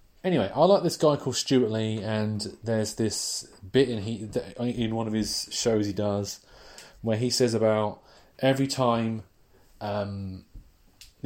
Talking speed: 155 wpm